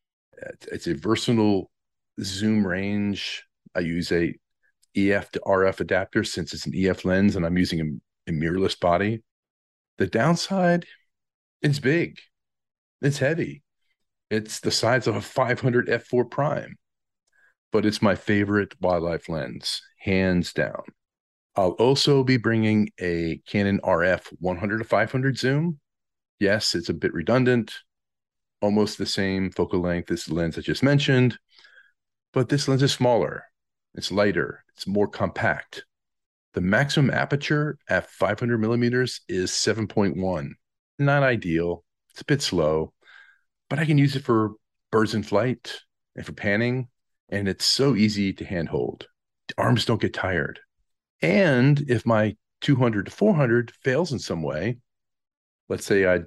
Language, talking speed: English, 140 wpm